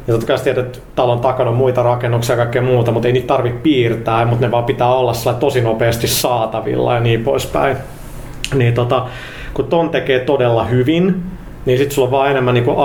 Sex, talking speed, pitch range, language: male, 195 wpm, 115-130 Hz, Finnish